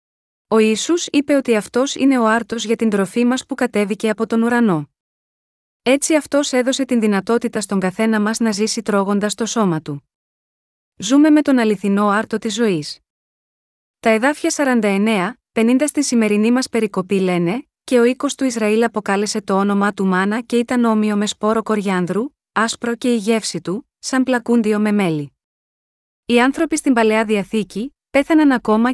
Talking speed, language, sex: 160 wpm, Greek, female